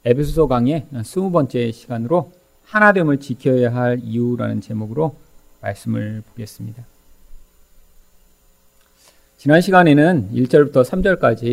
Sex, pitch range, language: male, 110-150 Hz, Korean